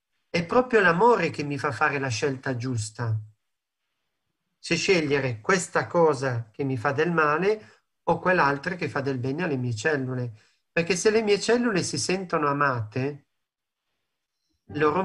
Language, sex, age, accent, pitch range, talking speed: Italian, male, 40-59, native, 130-170 Hz, 150 wpm